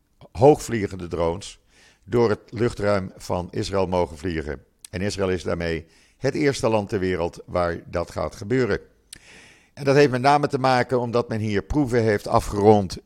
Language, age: Dutch, 50-69